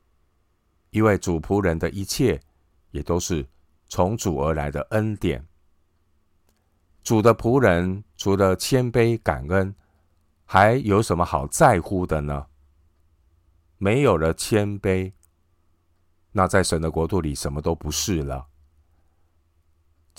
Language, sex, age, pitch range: Chinese, male, 50-69, 80-95 Hz